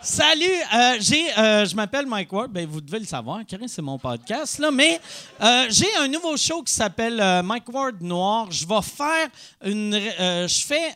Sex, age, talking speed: male, 40-59, 185 wpm